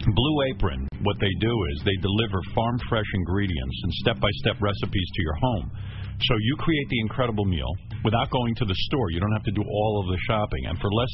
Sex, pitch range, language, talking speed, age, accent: male, 100-145 Hz, Russian, 215 wpm, 50-69, American